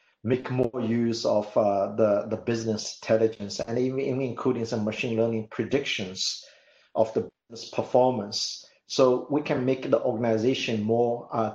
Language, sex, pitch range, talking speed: English, male, 110-125 Hz, 145 wpm